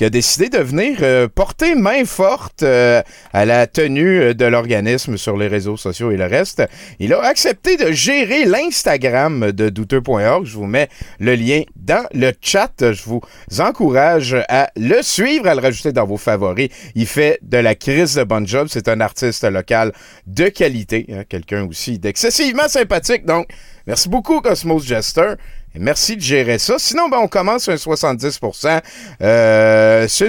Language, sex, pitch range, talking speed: French, male, 110-180 Hz, 165 wpm